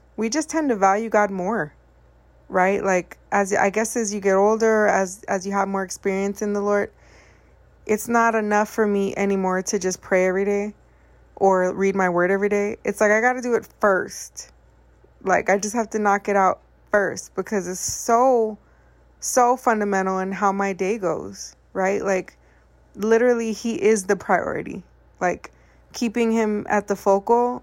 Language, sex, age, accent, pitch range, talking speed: English, female, 20-39, American, 195-230 Hz, 180 wpm